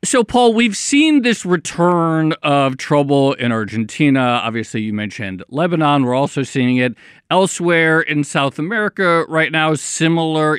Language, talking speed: English, 140 wpm